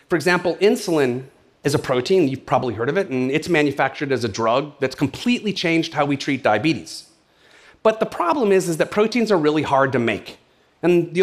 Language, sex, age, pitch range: Korean, male, 40-59, 140-195 Hz